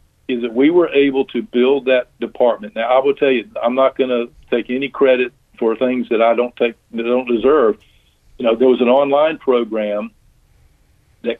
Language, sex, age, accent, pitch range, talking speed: English, male, 50-69, American, 110-130 Hz, 205 wpm